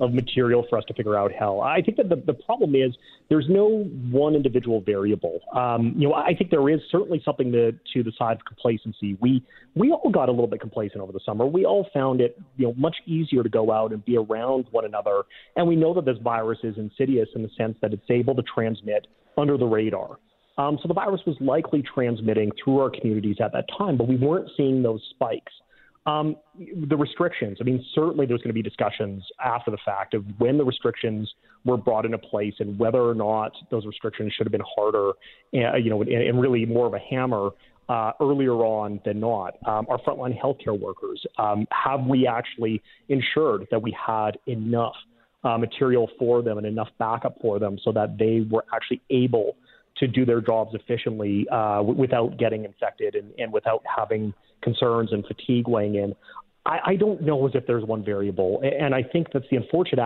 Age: 30-49